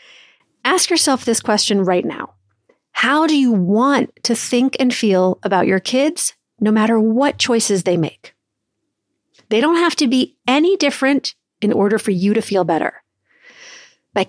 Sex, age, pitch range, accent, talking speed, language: female, 40-59, 200-260 Hz, American, 160 wpm, English